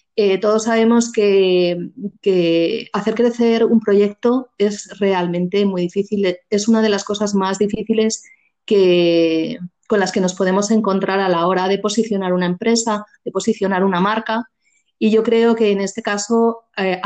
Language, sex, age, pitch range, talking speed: Spanish, female, 30-49, 185-220 Hz, 160 wpm